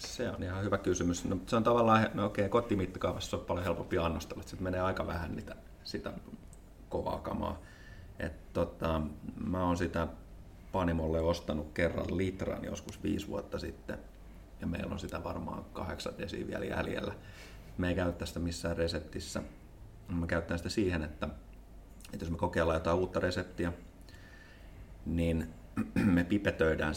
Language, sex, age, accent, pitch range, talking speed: Finnish, male, 30-49, native, 85-100 Hz, 150 wpm